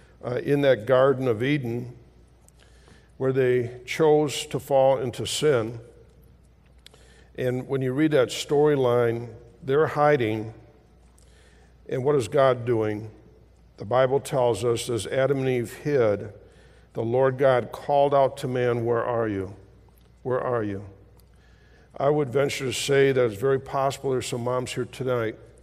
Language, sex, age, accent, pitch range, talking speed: English, male, 50-69, American, 105-135 Hz, 145 wpm